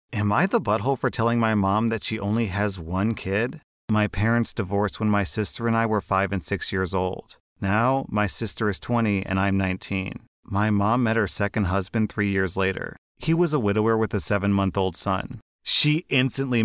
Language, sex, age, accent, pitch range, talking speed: English, male, 30-49, American, 100-120 Hz, 200 wpm